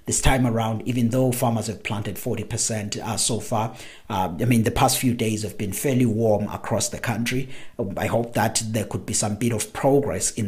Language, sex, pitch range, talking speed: English, male, 100-120 Hz, 210 wpm